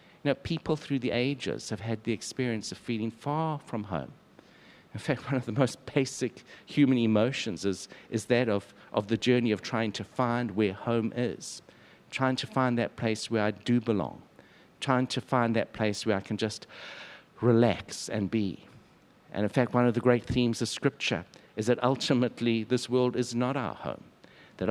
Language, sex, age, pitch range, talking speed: English, male, 60-79, 115-140 Hz, 190 wpm